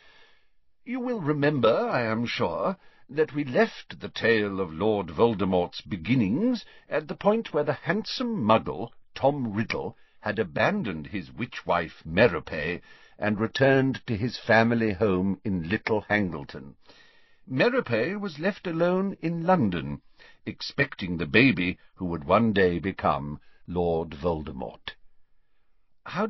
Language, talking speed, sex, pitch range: English, 125 wpm, male, 105-155 Hz